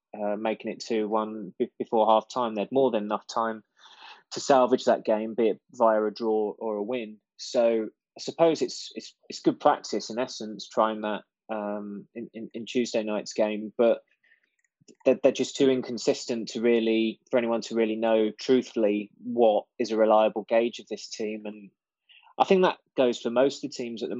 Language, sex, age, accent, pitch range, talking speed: English, male, 20-39, British, 105-120 Hz, 195 wpm